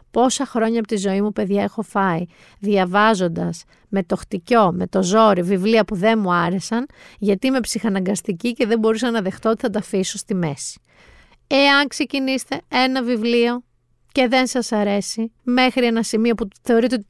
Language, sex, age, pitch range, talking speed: Greek, female, 30-49, 210-270 Hz, 170 wpm